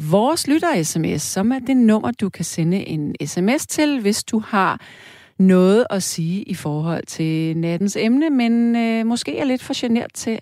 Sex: female